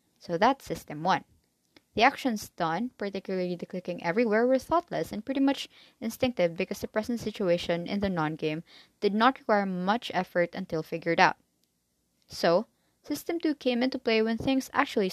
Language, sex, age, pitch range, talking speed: English, female, 20-39, 160-220 Hz, 165 wpm